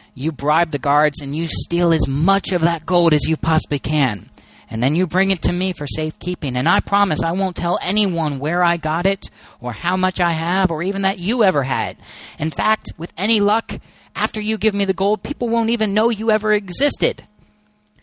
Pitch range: 135-190 Hz